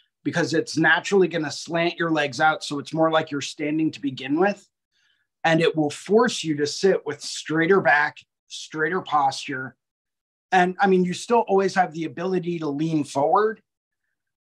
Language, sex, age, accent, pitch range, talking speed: English, male, 30-49, American, 155-190 Hz, 170 wpm